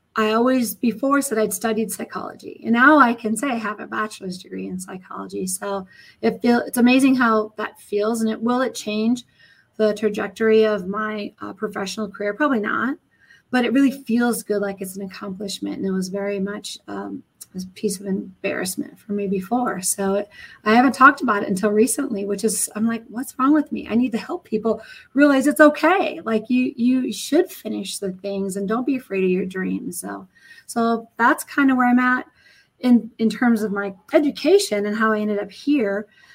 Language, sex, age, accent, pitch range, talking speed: English, female, 30-49, American, 195-240 Hz, 200 wpm